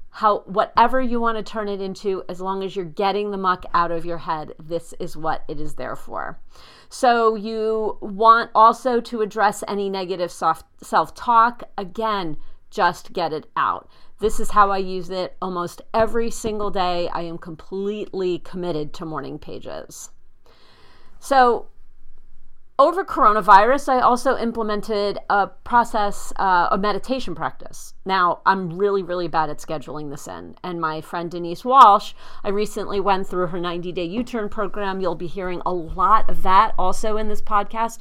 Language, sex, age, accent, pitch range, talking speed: English, female, 40-59, American, 175-220 Hz, 160 wpm